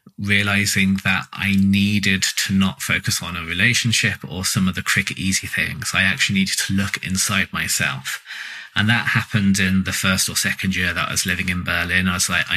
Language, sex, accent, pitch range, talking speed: English, male, British, 95-110 Hz, 200 wpm